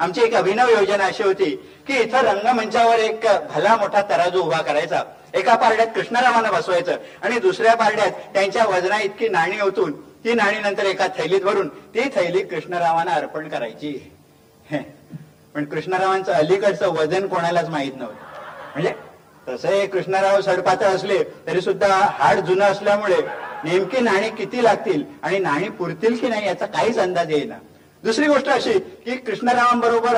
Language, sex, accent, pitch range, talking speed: Marathi, male, native, 180-230 Hz, 145 wpm